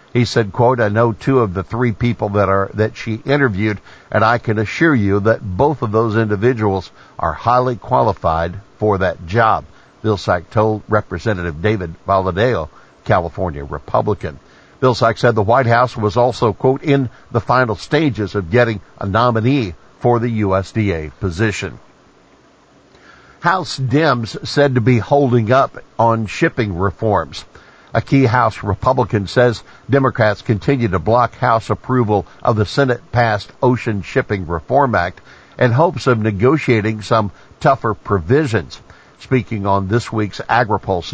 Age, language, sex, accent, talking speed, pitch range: 60-79, English, male, American, 145 wpm, 100-125 Hz